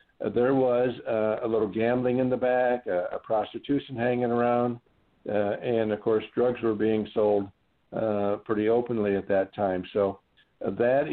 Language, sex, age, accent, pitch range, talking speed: English, male, 60-79, American, 105-125 Hz, 175 wpm